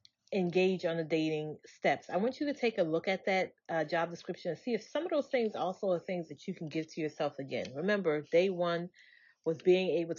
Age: 30-49